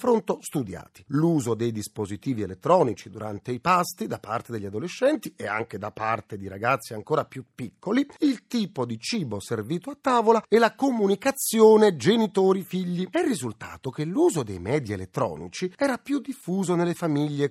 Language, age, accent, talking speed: Italian, 40-59, native, 155 wpm